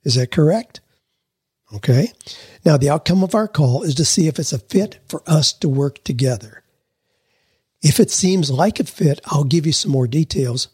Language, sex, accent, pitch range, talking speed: English, male, American, 130-170 Hz, 190 wpm